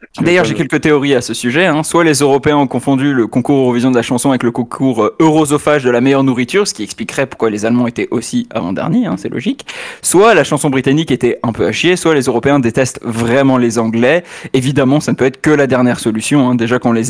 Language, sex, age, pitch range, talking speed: French, male, 20-39, 130-170 Hz, 240 wpm